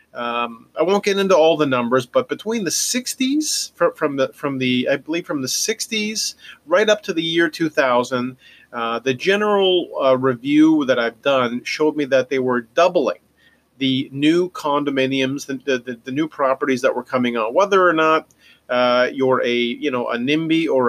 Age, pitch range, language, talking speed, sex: 40-59, 120-150 Hz, English, 190 wpm, male